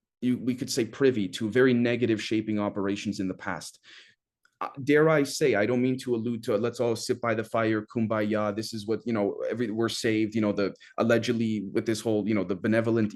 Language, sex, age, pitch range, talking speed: English, male, 30-49, 105-130 Hz, 230 wpm